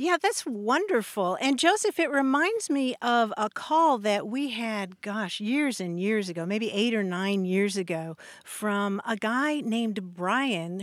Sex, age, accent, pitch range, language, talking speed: female, 50-69, American, 200-270 Hz, English, 165 wpm